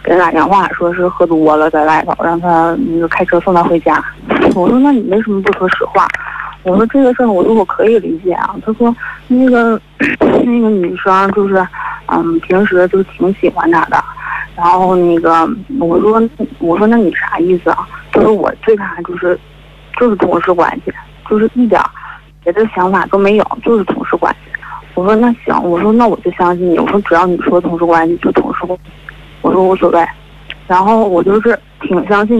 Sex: female